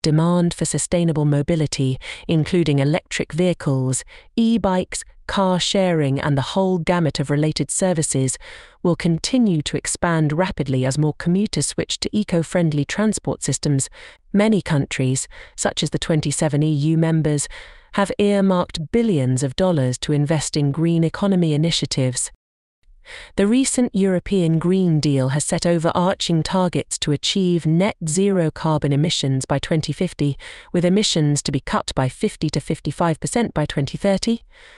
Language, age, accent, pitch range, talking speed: English, 40-59, British, 145-185 Hz, 130 wpm